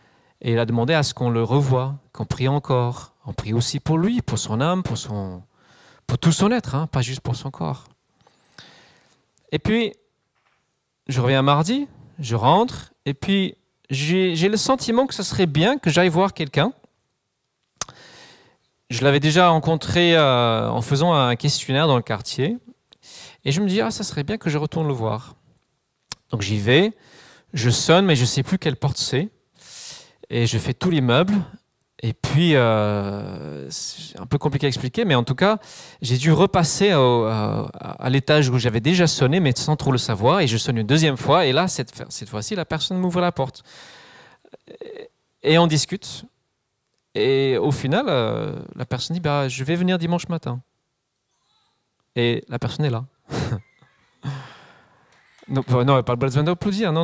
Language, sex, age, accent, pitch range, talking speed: French, male, 40-59, French, 125-175 Hz, 175 wpm